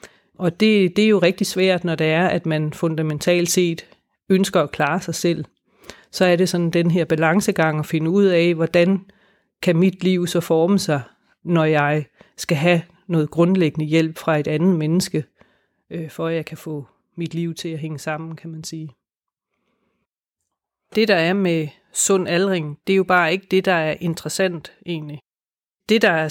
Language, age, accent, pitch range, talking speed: Danish, 30-49, native, 160-185 Hz, 185 wpm